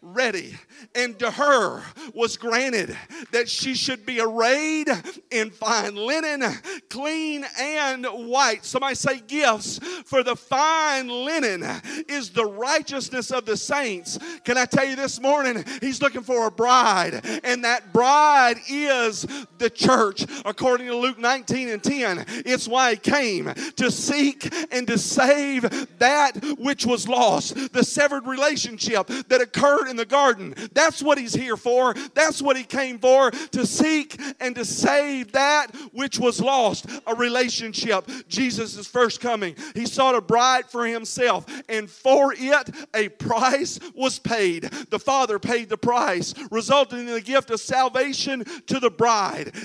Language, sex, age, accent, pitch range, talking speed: English, male, 40-59, American, 230-275 Hz, 150 wpm